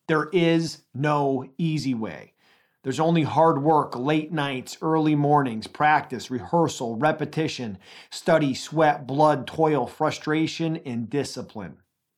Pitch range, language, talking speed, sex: 130-160 Hz, English, 115 wpm, male